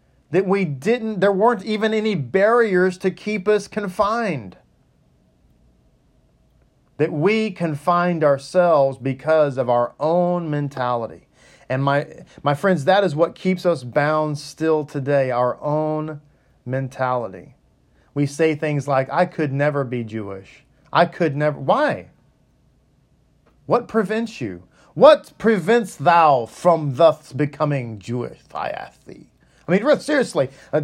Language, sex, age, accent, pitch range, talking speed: English, male, 40-59, American, 145-195 Hz, 130 wpm